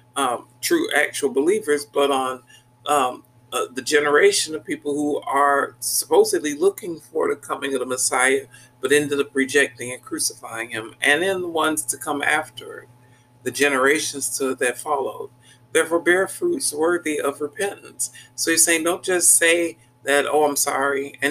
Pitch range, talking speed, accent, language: 125-160 Hz, 160 wpm, American, English